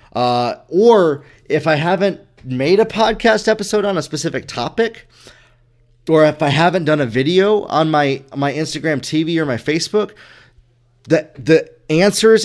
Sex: male